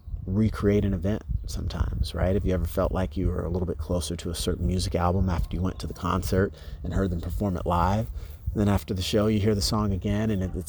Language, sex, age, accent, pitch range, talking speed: English, male, 30-49, American, 80-95 Hz, 260 wpm